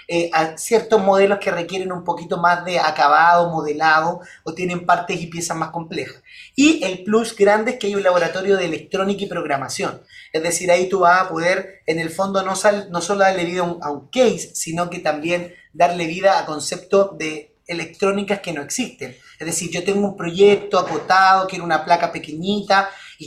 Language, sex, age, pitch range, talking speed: Spanish, male, 30-49, 170-200 Hz, 195 wpm